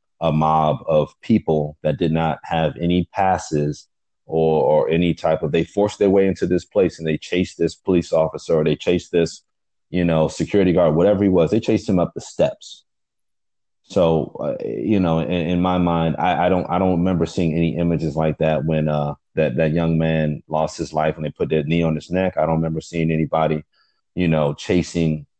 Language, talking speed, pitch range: English, 210 wpm, 75-85 Hz